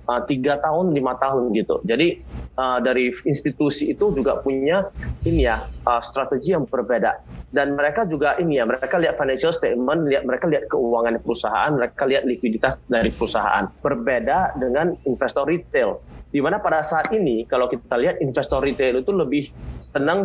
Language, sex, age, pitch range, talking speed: Indonesian, male, 30-49, 125-155 Hz, 165 wpm